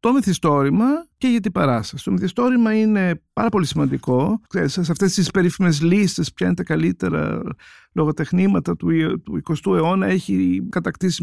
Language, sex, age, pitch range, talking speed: Greek, male, 50-69, 140-195 Hz, 135 wpm